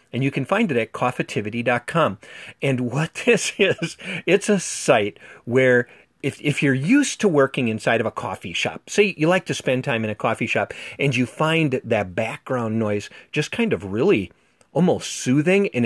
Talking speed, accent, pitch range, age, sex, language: 185 wpm, American, 115-145 Hz, 40-59, male, English